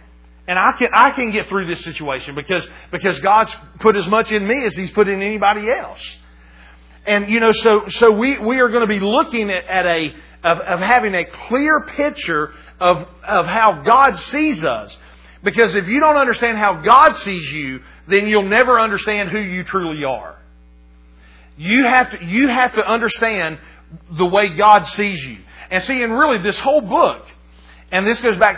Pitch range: 135-230 Hz